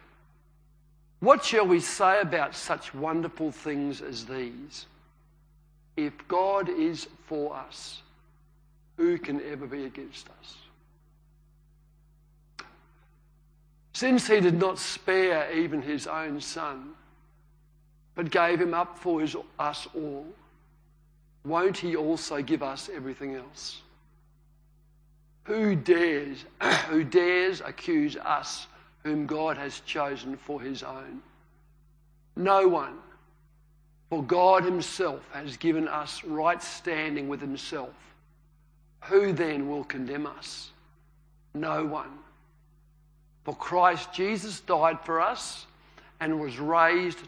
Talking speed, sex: 105 wpm, male